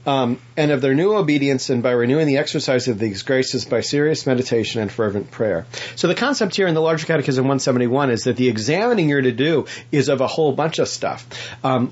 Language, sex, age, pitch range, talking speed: English, male, 40-59, 120-150 Hz, 220 wpm